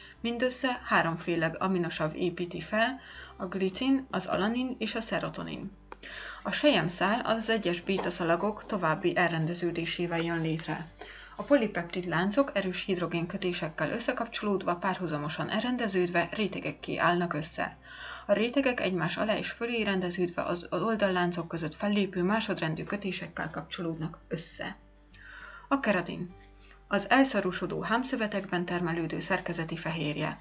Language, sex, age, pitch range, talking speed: Hungarian, female, 30-49, 170-220 Hz, 110 wpm